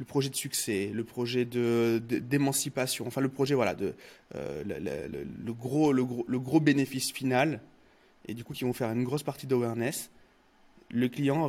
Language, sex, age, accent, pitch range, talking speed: French, male, 20-39, French, 120-150 Hz, 195 wpm